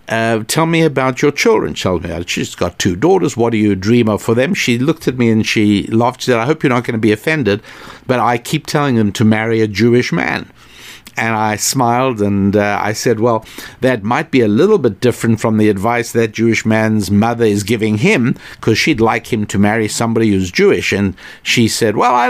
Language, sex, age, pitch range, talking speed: English, male, 60-79, 110-130 Hz, 225 wpm